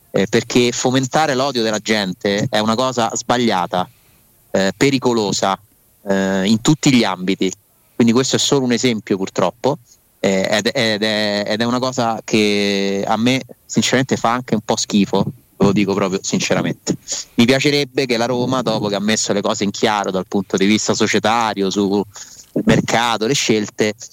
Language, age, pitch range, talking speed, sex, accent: Italian, 30-49, 105-130 Hz, 160 wpm, male, native